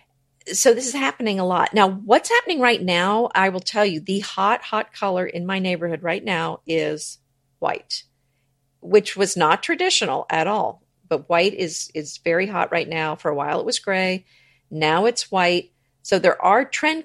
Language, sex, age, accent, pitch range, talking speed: English, female, 50-69, American, 160-205 Hz, 185 wpm